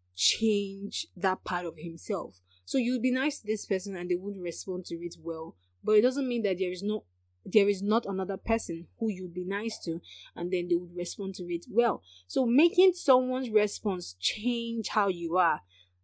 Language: English